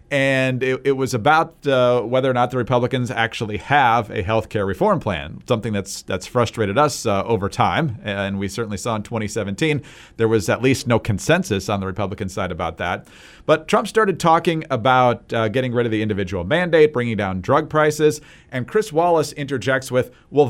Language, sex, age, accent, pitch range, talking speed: English, male, 40-59, American, 110-150 Hz, 195 wpm